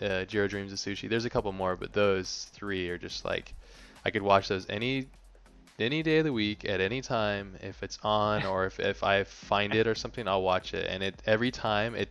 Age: 20-39